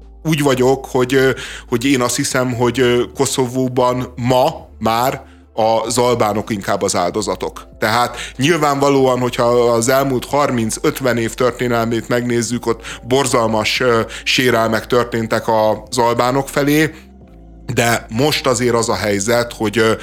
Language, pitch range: Hungarian, 110-125 Hz